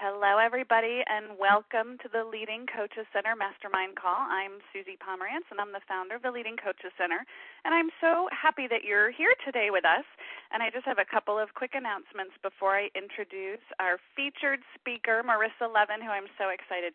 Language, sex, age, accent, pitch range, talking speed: English, female, 30-49, American, 190-235 Hz, 190 wpm